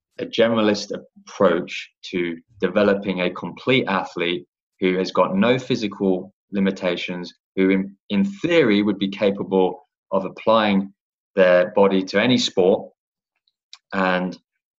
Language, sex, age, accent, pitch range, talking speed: English, male, 20-39, British, 90-100 Hz, 120 wpm